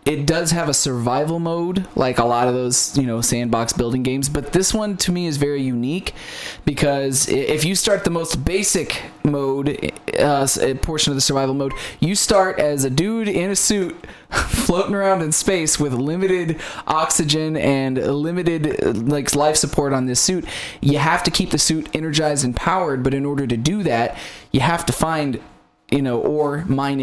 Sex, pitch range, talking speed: male, 135-165 Hz, 190 wpm